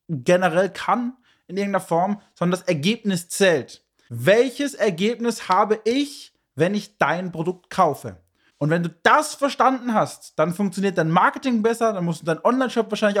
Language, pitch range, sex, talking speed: German, 170-215 Hz, male, 160 wpm